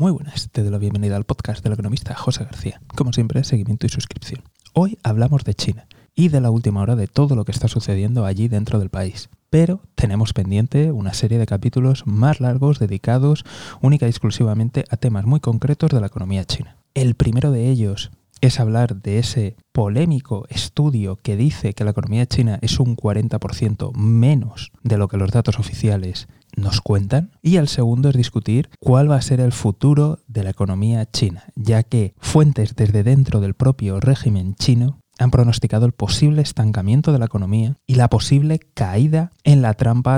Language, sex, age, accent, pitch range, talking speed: Spanish, male, 20-39, Spanish, 105-135 Hz, 185 wpm